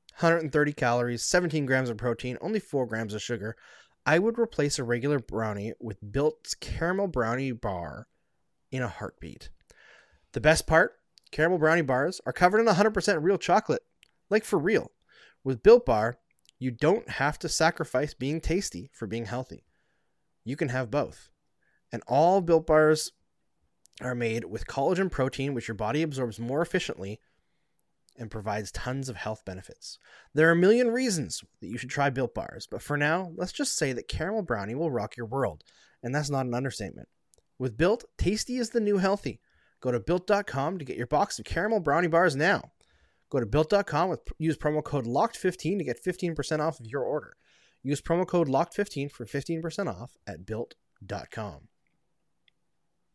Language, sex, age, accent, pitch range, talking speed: English, male, 20-39, American, 120-175 Hz, 170 wpm